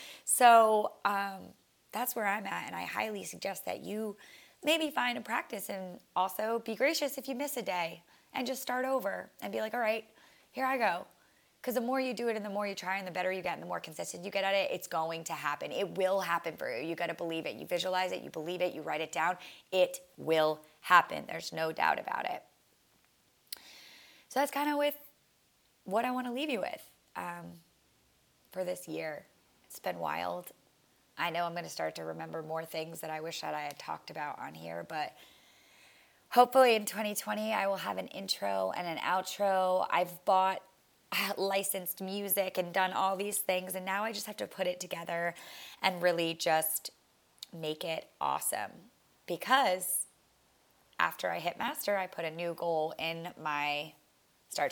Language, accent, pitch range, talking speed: English, American, 165-215 Hz, 200 wpm